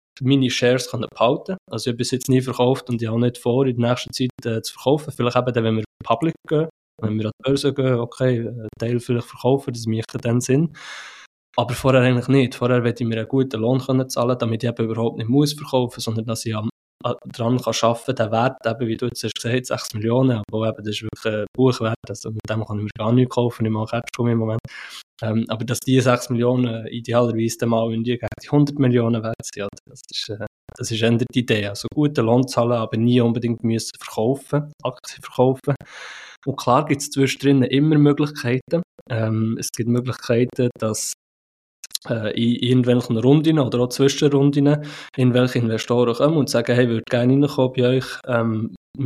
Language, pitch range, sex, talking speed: German, 115-130 Hz, male, 205 wpm